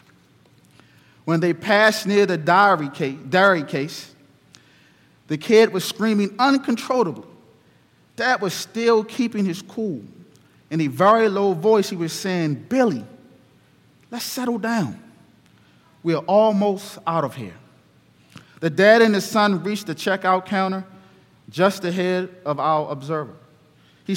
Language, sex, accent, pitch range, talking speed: English, male, American, 155-210 Hz, 130 wpm